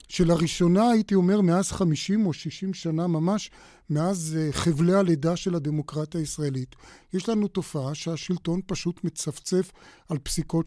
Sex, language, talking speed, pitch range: male, Hebrew, 130 wpm, 160-190 Hz